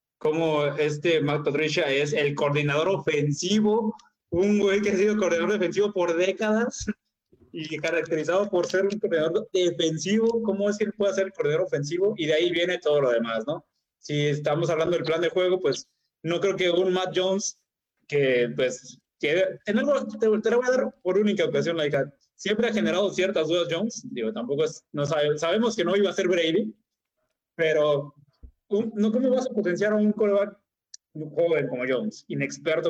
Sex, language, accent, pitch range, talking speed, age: male, Spanish, Mexican, 155-205 Hz, 185 wpm, 20-39